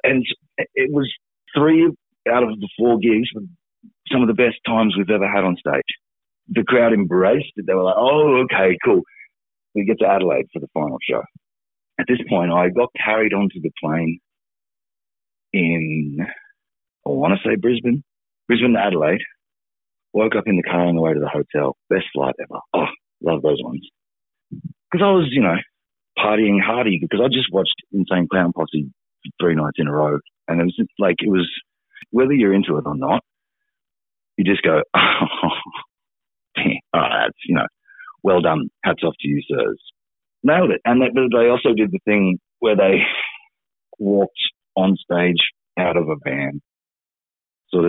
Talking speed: 175 wpm